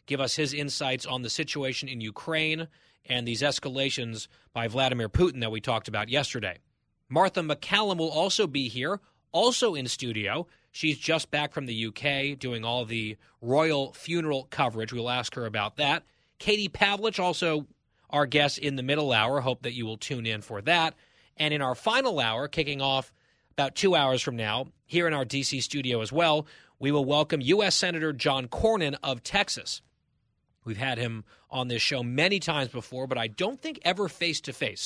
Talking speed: 180 wpm